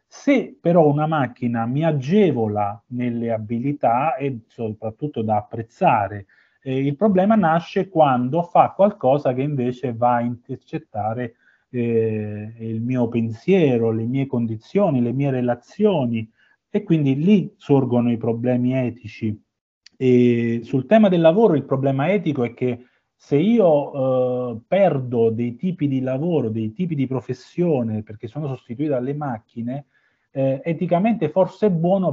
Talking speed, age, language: 135 wpm, 30-49, Italian